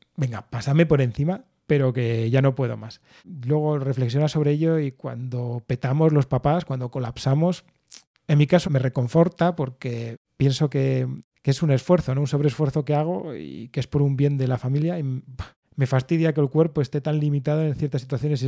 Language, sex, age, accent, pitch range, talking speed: Spanish, male, 30-49, Spanish, 125-145 Hz, 195 wpm